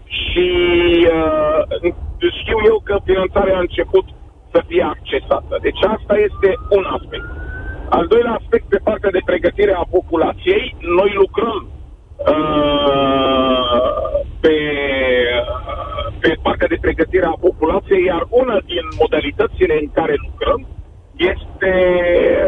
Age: 50-69